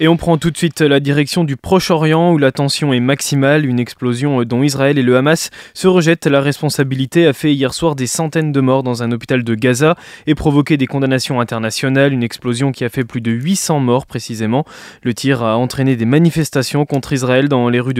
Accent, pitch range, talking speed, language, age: French, 130-155 Hz, 215 wpm, French, 20-39